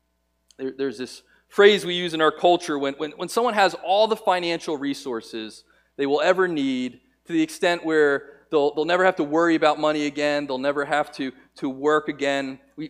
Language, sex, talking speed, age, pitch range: English, male, 195 wpm, 40-59, 140-185 Hz